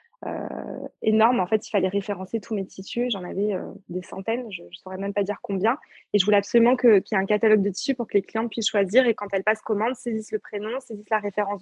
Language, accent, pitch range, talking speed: French, French, 195-225 Hz, 265 wpm